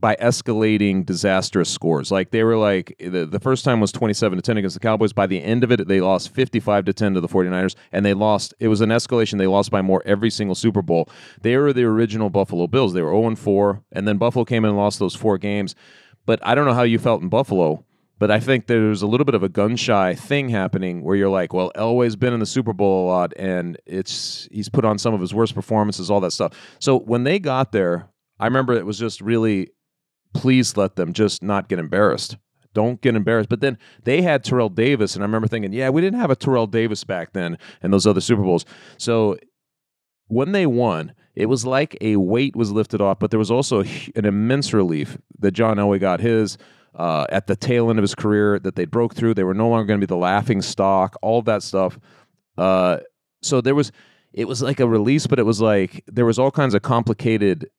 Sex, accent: male, American